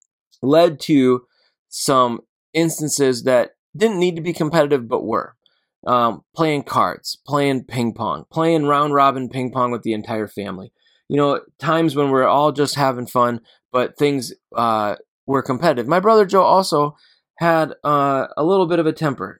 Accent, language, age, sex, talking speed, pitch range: American, English, 20-39, male, 165 wpm, 125-150 Hz